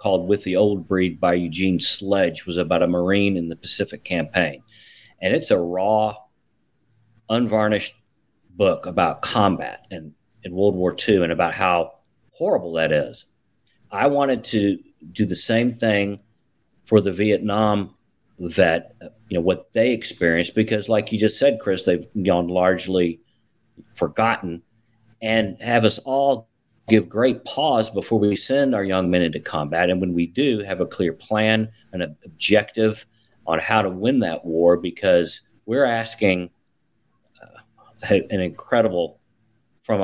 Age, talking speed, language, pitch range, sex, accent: 40-59, 145 wpm, English, 90-110 Hz, male, American